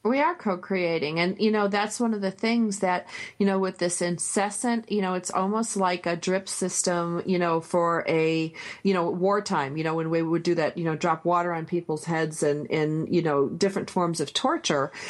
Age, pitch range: 40-59, 170-205 Hz